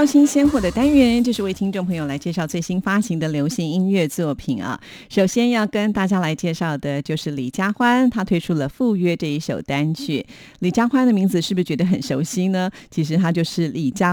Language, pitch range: Chinese, 150-195 Hz